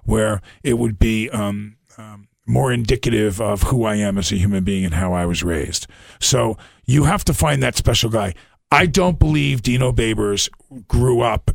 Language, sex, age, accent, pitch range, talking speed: English, male, 40-59, American, 105-125 Hz, 185 wpm